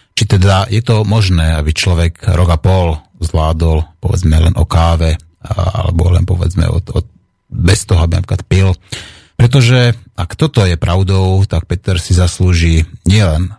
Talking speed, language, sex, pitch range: 155 wpm, Slovak, male, 85-105 Hz